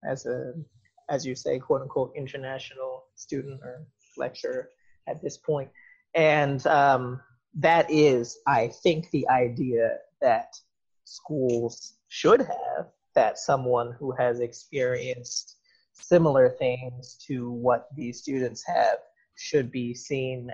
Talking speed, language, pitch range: 115 wpm, English, 125-180 Hz